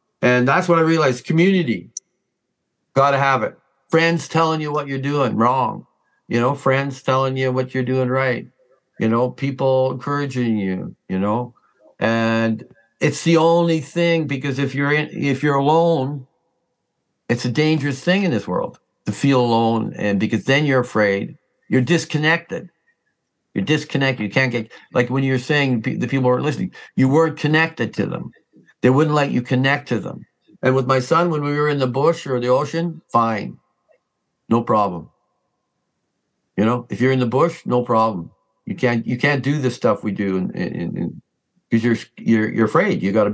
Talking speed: 185 wpm